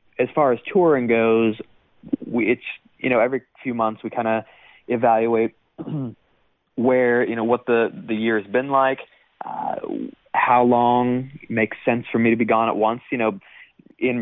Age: 30-49